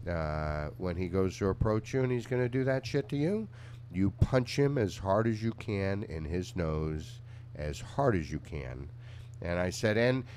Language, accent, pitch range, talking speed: English, American, 100-125 Hz, 210 wpm